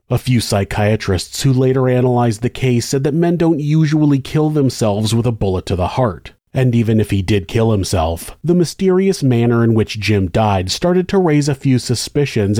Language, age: English, 30-49